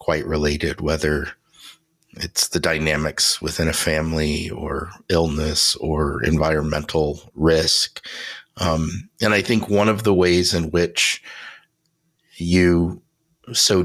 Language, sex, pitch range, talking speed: English, male, 75-90 Hz, 115 wpm